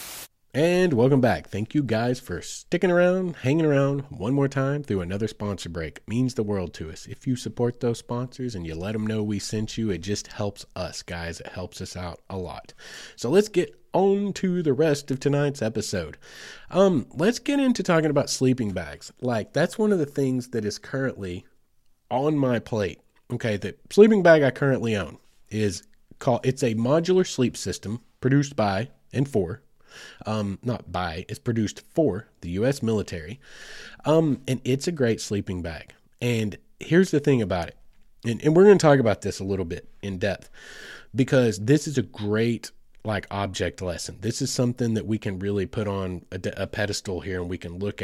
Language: English